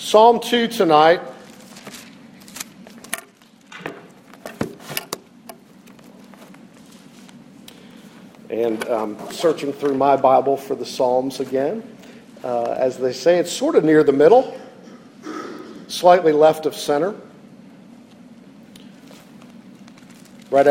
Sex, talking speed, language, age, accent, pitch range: male, 80 wpm, English, 50-69, American, 155-230 Hz